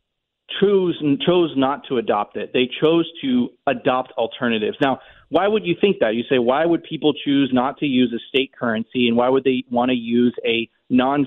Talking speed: 210 wpm